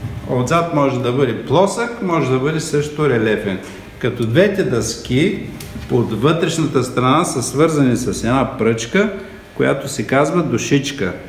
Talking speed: 135 wpm